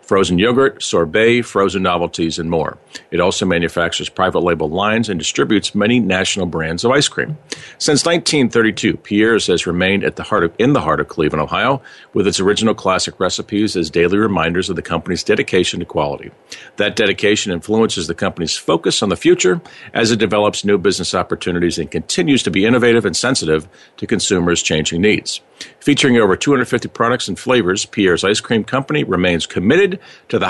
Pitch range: 90-115 Hz